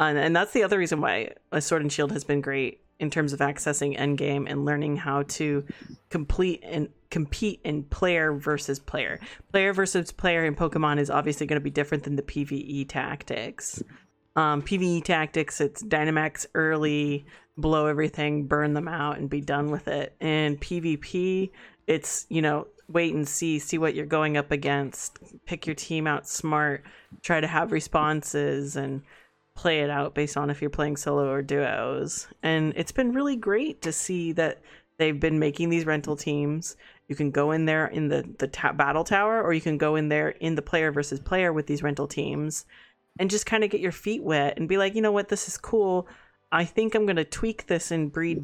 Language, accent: English, American